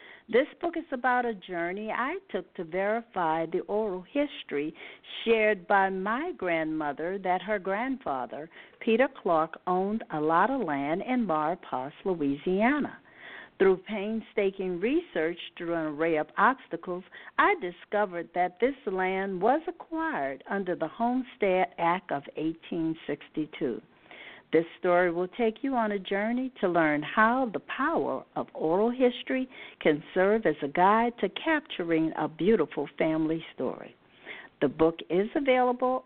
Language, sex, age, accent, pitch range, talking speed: English, female, 60-79, American, 165-235 Hz, 135 wpm